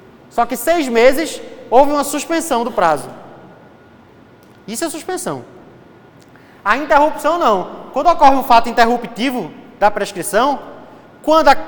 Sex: male